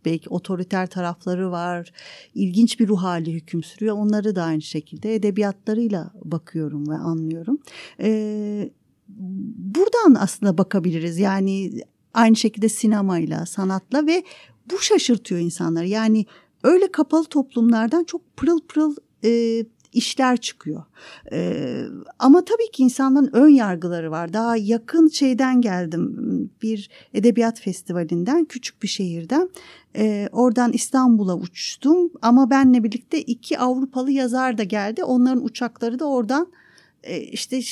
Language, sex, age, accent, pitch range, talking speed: Turkish, female, 50-69, native, 195-275 Hz, 120 wpm